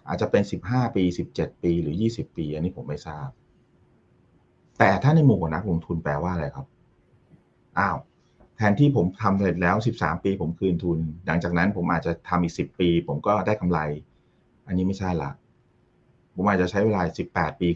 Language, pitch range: Thai, 85-105 Hz